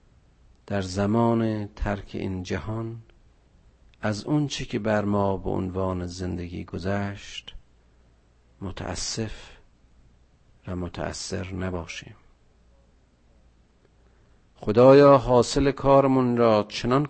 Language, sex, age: Persian, male, 50-69